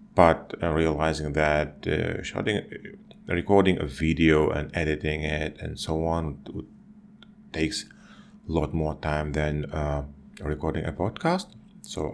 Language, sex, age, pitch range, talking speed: English, male, 30-49, 75-110 Hz, 120 wpm